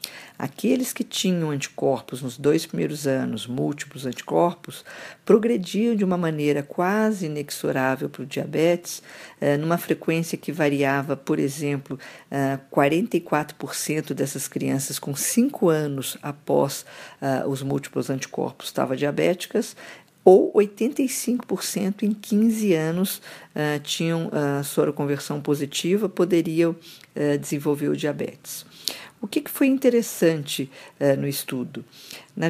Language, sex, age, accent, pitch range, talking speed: Portuguese, female, 50-69, Brazilian, 140-180 Hz, 105 wpm